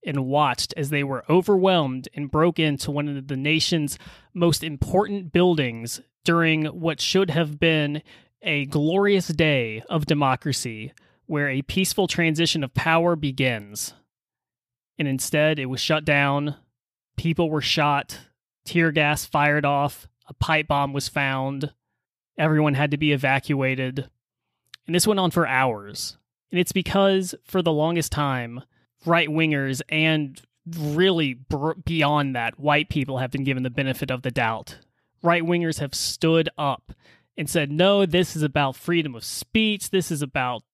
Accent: American